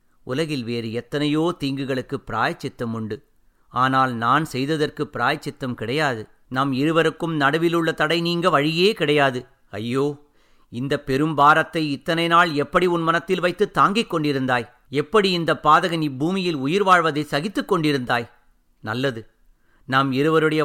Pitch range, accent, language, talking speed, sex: 130-170 Hz, native, Tamil, 120 wpm, male